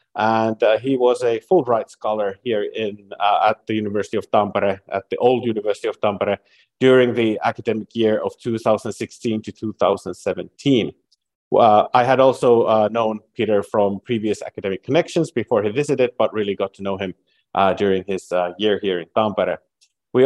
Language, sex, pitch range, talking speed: Finnish, male, 100-125 Hz, 170 wpm